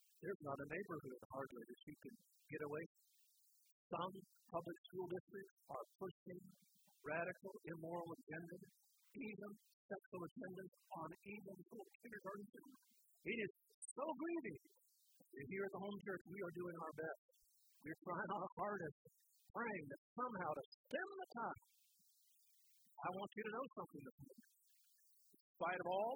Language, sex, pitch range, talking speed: English, male, 175-235 Hz, 150 wpm